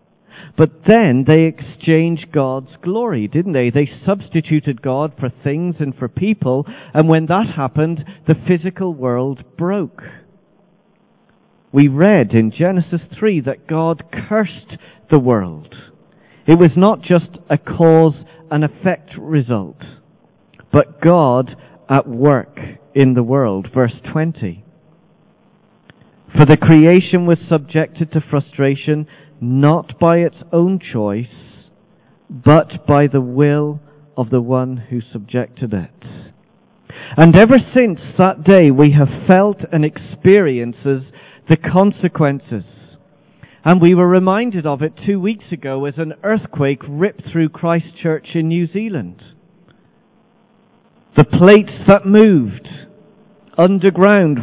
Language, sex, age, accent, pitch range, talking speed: English, male, 50-69, British, 140-185 Hz, 120 wpm